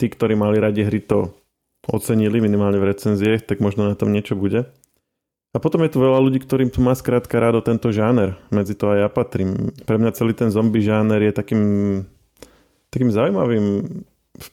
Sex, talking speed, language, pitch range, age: male, 185 wpm, Slovak, 100-115 Hz, 20-39